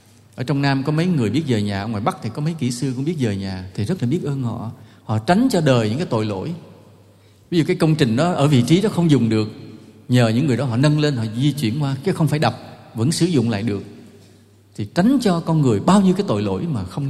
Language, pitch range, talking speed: English, 110-145 Hz, 280 wpm